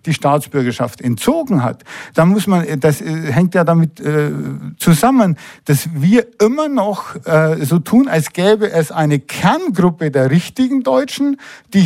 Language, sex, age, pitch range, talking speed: German, male, 50-69, 155-205 Hz, 145 wpm